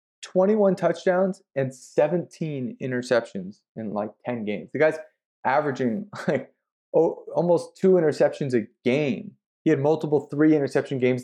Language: English